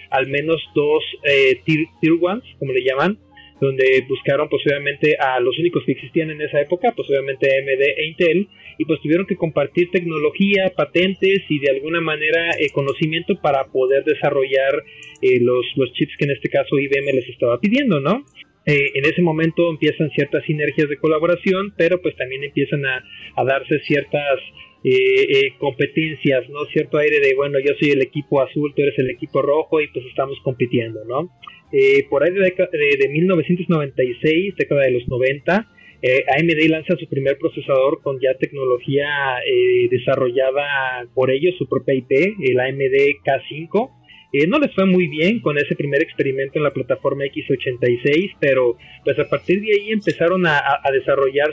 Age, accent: 30-49, Mexican